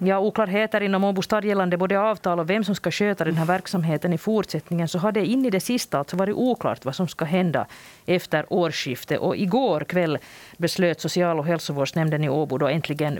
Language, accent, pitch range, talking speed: Swedish, Finnish, 155-195 Hz, 205 wpm